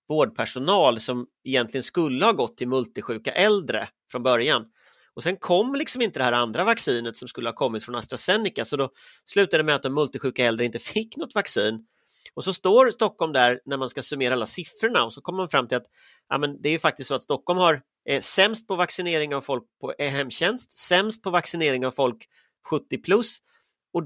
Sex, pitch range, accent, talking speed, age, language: male, 125-190 Hz, native, 205 wpm, 30-49, Swedish